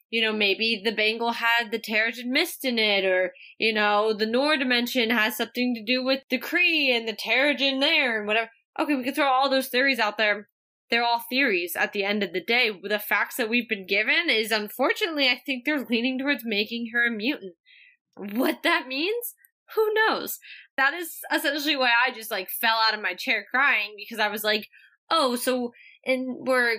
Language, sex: English, female